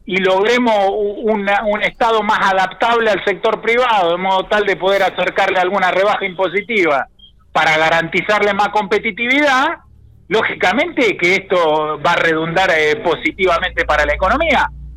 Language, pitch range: Spanish, 180-225 Hz